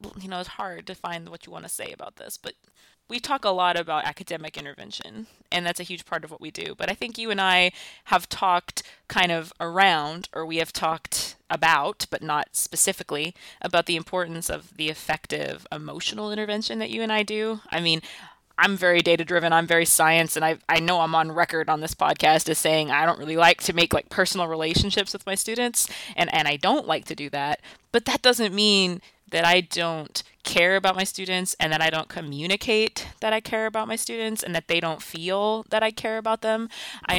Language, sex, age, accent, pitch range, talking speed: English, female, 20-39, American, 160-200 Hz, 220 wpm